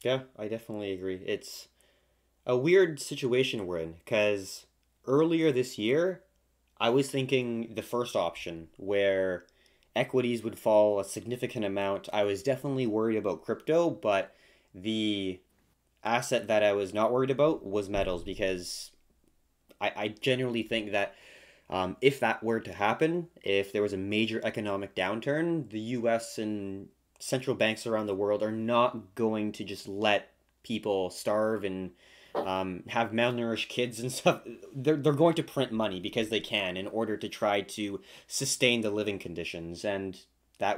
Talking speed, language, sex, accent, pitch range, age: 155 wpm, English, male, American, 95-125 Hz, 20-39